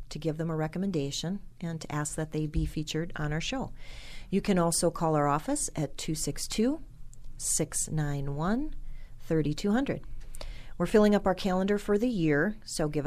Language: English